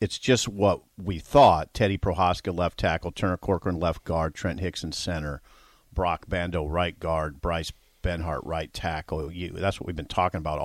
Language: English